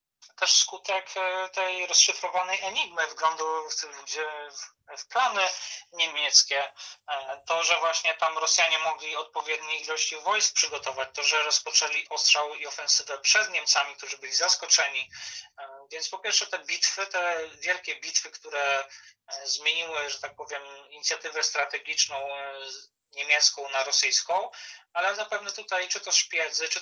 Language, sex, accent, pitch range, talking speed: Polish, male, native, 145-180 Hz, 130 wpm